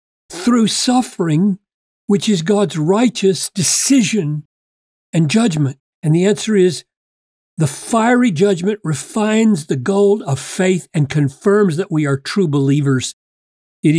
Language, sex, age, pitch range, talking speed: English, male, 50-69, 145-205 Hz, 125 wpm